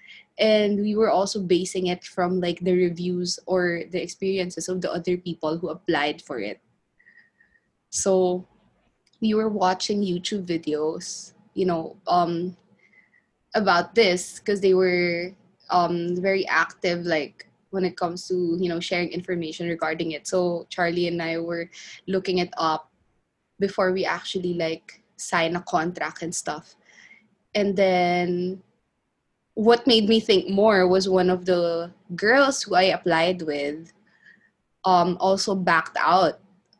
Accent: Filipino